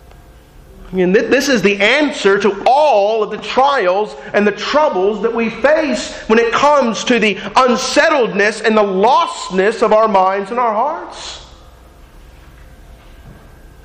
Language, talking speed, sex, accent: English, 145 wpm, male, American